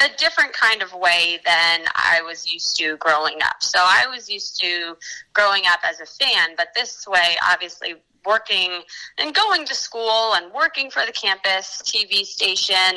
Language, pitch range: English, 175-210 Hz